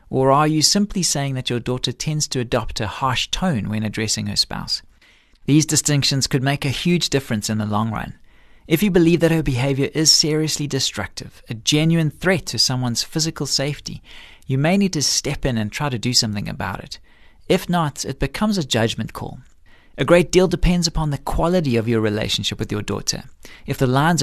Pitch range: 120-160 Hz